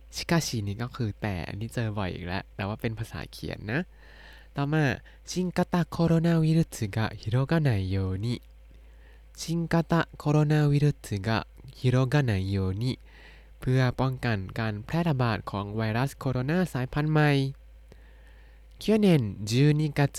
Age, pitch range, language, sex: 20-39, 100-140 Hz, Thai, male